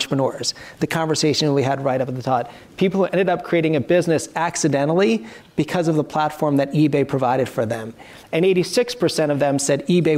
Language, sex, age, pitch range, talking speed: English, male, 40-59, 145-170 Hz, 195 wpm